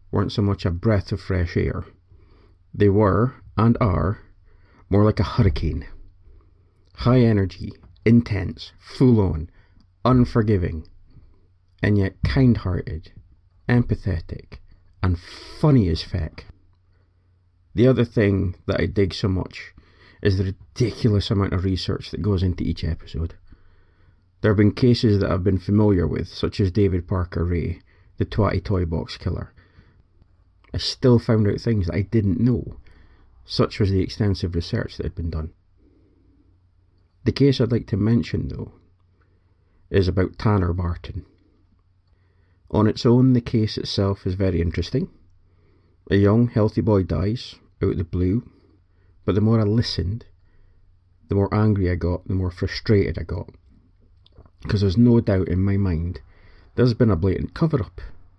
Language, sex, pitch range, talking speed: English, male, 90-105 Hz, 145 wpm